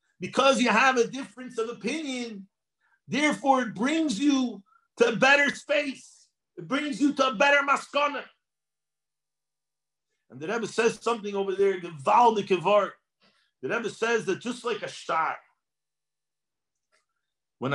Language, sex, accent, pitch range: English, male, American, 195-290 Hz